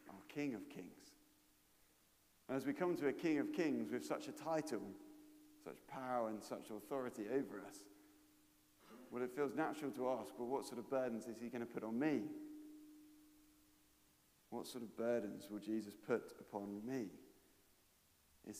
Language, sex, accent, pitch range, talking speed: English, male, British, 105-155 Hz, 165 wpm